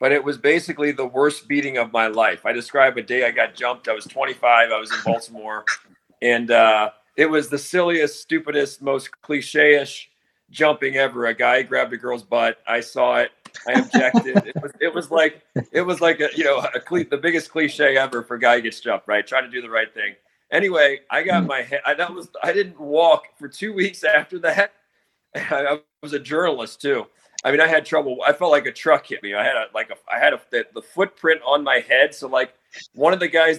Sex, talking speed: male, 230 wpm